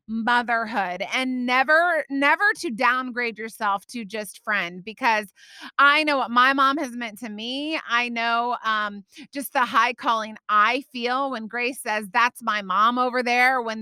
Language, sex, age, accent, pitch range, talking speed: English, female, 30-49, American, 215-270 Hz, 165 wpm